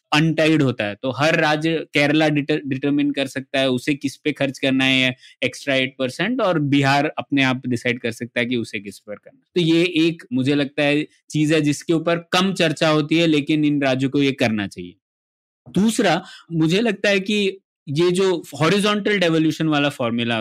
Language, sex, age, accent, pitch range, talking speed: Hindi, male, 20-39, native, 135-175 Hz, 195 wpm